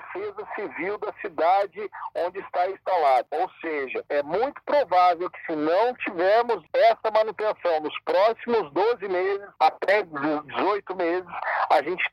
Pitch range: 180-290 Hz